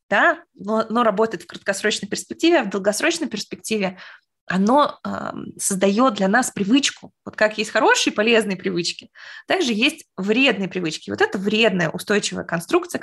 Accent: native